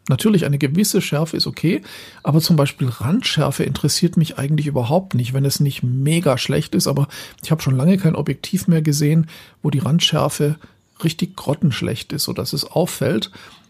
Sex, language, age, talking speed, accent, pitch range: male, German, 50-69, 170 wpm, German, 140-180 Hz